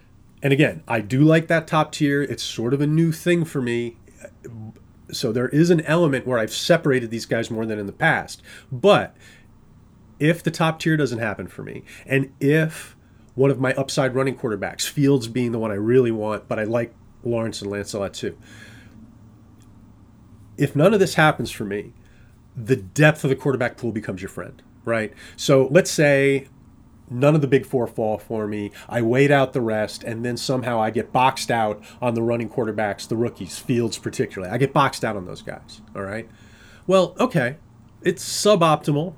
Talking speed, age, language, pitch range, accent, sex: 190 wpm, 30-49, English, 110-140 Hz, American, male